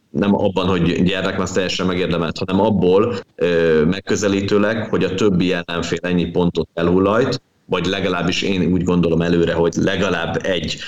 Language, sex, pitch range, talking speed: Hungarian, male, 85-105 Hz, 150 wpm